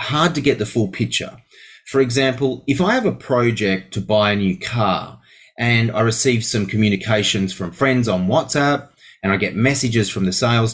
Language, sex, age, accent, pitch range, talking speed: English, male, 30-49, Australian, 105-135 Hz, 190 wpm